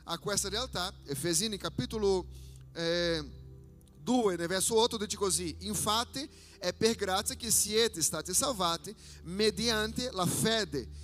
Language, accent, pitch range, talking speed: Italian, Brazilian, 175-240 Hz, 120 wpm